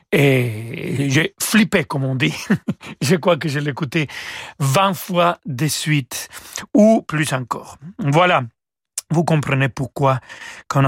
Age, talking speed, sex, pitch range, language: 40-59, 130 wpm, male, 135-170 Hz, French